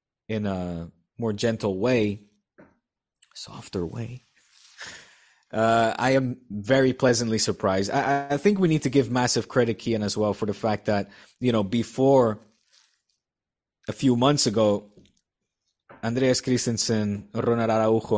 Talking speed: 130 wpm